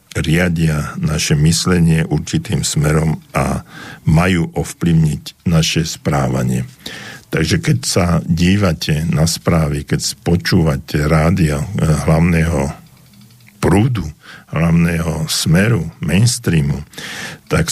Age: 60-79